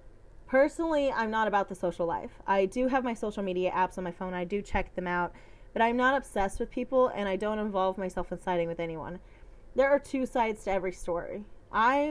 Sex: female